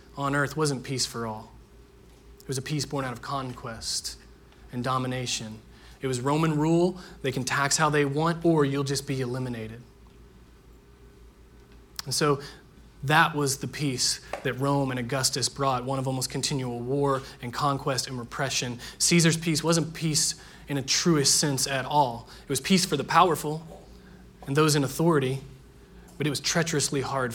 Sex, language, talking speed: male, English, 165 wpm